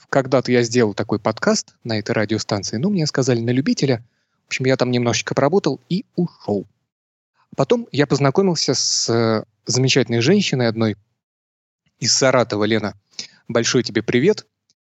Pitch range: 115-140 Hz